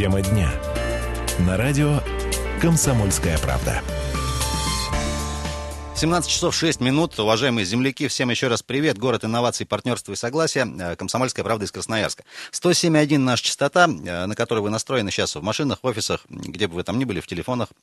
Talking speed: 150 wpm